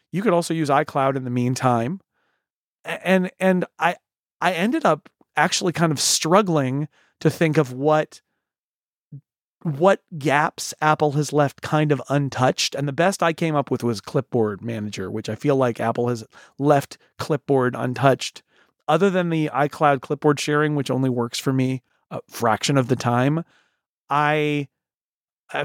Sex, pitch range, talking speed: male, 130-160 Hz, 155 wpm